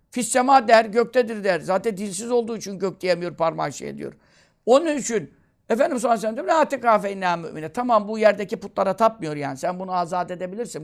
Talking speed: 175 wpm